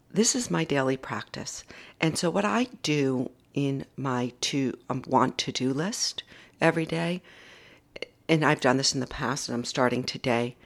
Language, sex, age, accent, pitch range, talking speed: English, female, 50-69, American, 120-150 Hz, 175 wpm